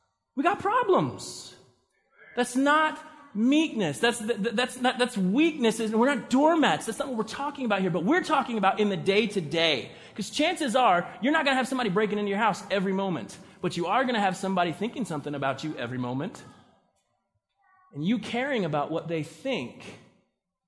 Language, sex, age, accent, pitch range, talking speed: English, male, 30-49, American, 165-235 Hz, 180 wpm